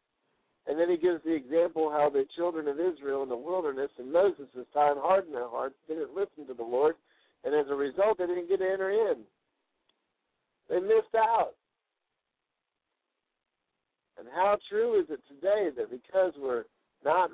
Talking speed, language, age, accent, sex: 165 wpm, English, 60-79, American, male